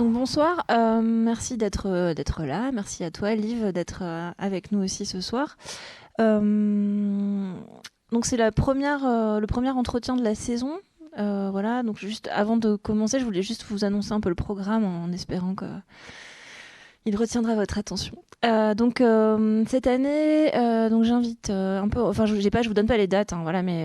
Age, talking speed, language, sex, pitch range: 20-39, 190 wpm, French, female, 190-230 Hz